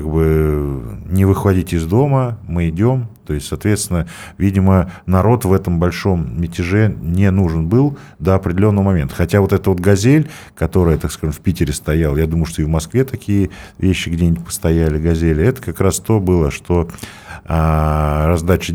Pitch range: 80-100 Hz